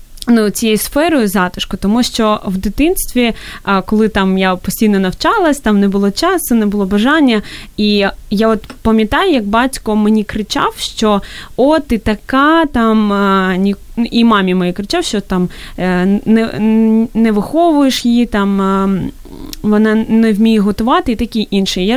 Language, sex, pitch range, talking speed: Ukrainian, female, 195-235 Hz, 140 wpm